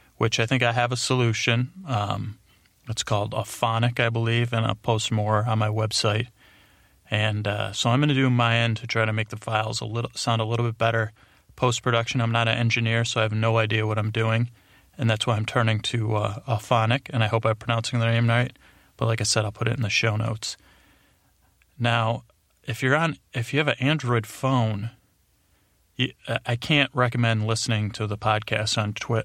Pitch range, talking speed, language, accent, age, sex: 110-120 Hz, 210 wpm, English, American, 30-49, male